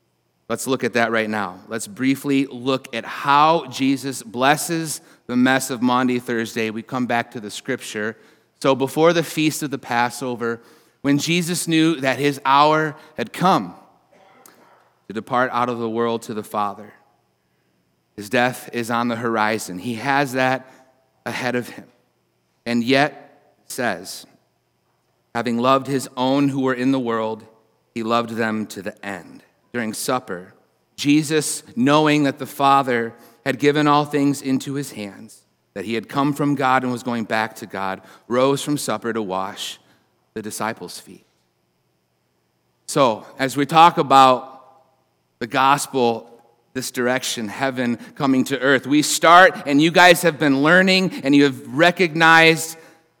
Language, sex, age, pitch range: English, male, 30-49, 115-140 Hz